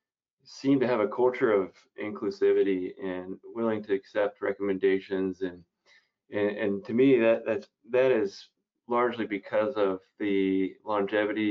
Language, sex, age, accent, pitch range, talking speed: English, male, 30-49, American, 100-115 Hz, 135 wpm